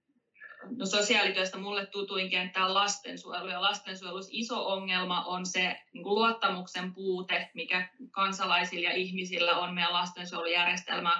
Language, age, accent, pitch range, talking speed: Finnish, 20-39, native, 180-200 Hz, 115 wpm